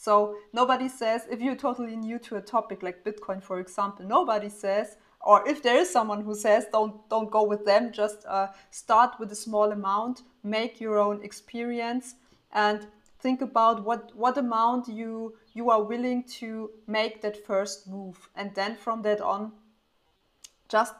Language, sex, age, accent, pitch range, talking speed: English, female, 30-49, German, 205-235 Hz, 170 wpm